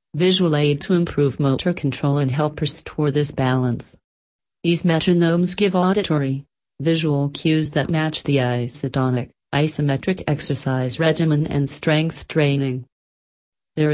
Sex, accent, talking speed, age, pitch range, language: female, American, 120 wpm, 40-59, 140-165 Hz, English